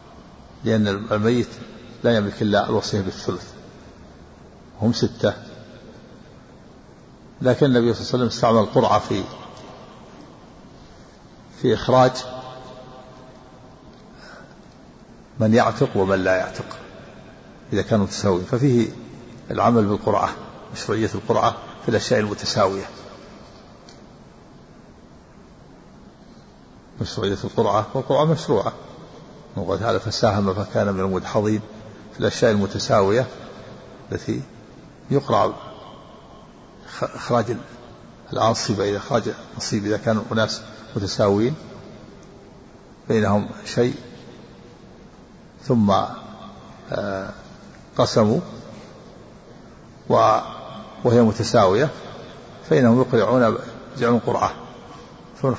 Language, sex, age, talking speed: Arabic, male, 50-69, 75 wpm